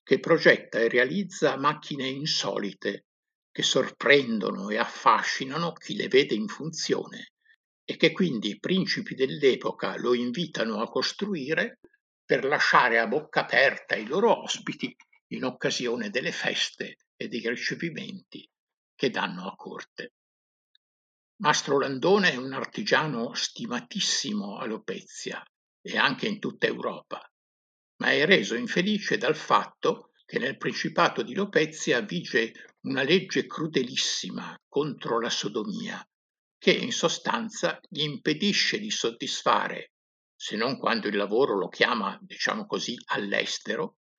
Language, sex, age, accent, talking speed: Italian, male, 60-79, native, 125 wpm